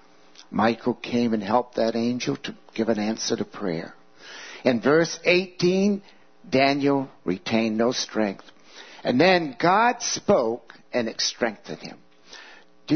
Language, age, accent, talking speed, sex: English, 60-79, American, 130 wpm, male